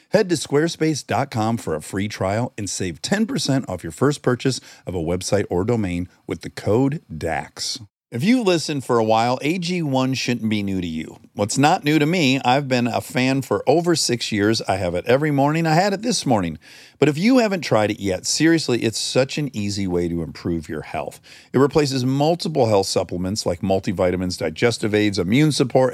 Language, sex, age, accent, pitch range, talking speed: English, male, 50-69, American, 100-150 Hz, 200 wpm